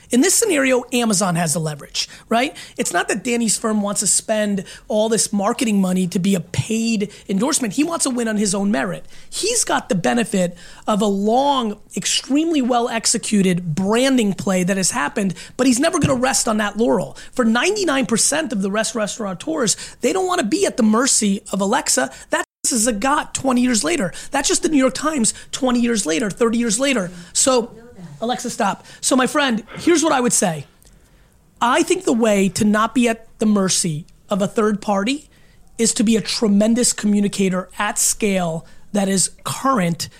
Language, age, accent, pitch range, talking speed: English, 30-49, American, 200-260 Hz, 190 wpm